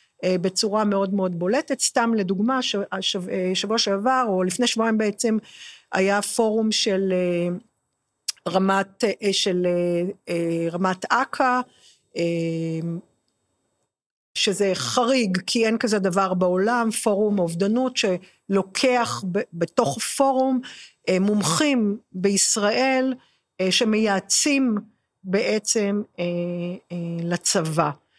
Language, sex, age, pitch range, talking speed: Hebrew, female, 50-69, 185-240 Hz, 85 wpm